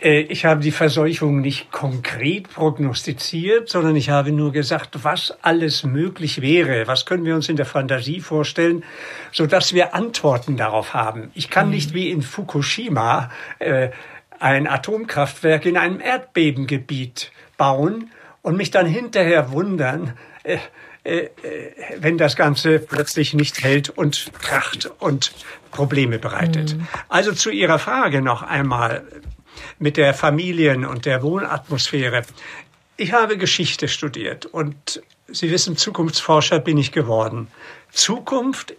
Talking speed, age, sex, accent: 125 wpm, 60-79, male, German